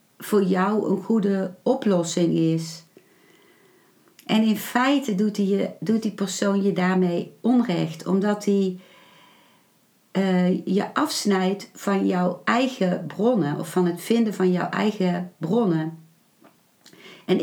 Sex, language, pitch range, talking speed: female, Dutch, 175-210 Hz, 115 wpm